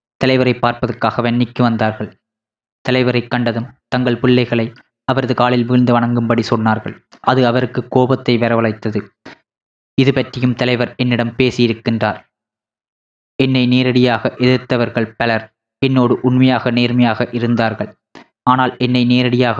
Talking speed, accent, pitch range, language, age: 100 wpm, native, 115-130 Hz, Tamil, 20-39